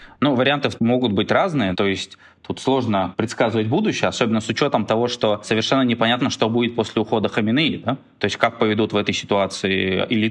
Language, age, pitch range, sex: Russian, 20-39, 115-145 Hz, male